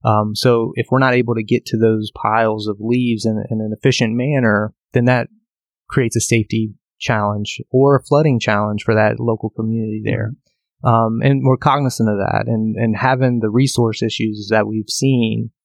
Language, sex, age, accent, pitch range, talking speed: English, male, 20-39, American, 110-125 Hz, 185 wpm